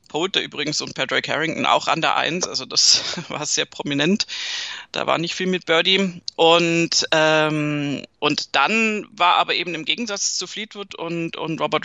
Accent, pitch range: German, 160-220 Hz